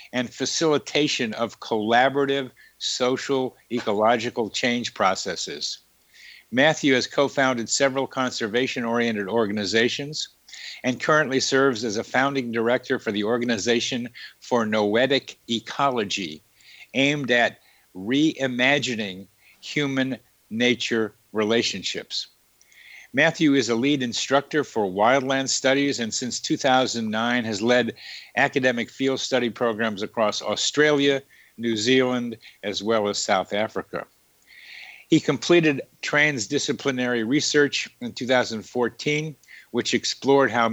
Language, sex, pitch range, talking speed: English, male, 115-135 Hz, 100 wpm